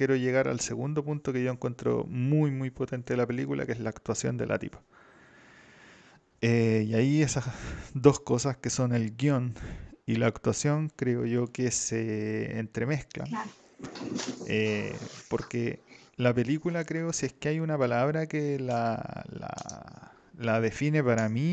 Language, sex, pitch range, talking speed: Spanish, male, 115-145 Hz, 160 wpm